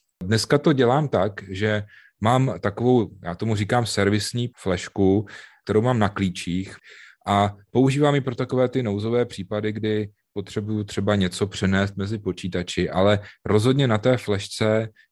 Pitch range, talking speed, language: 95-110 Hz, 145 wpm, Czech